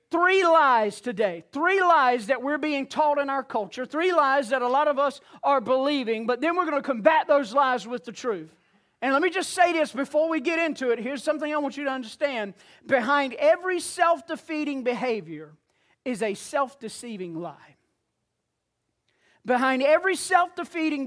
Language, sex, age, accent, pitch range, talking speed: English, male, 40-59, American, 245-325 Hz, 175 wpm